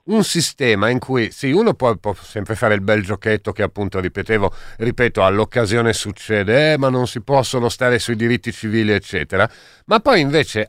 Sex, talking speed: male, 180 wpm